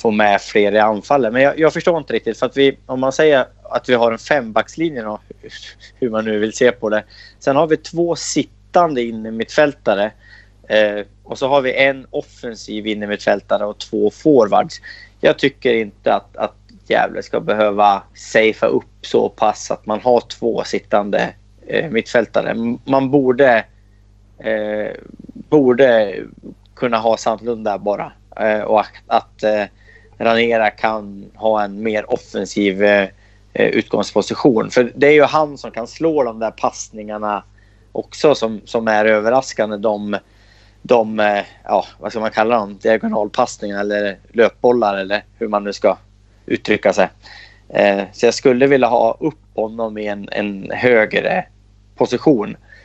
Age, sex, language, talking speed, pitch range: 30-49, male, Swedish, 155 wpm, 105-120 Hz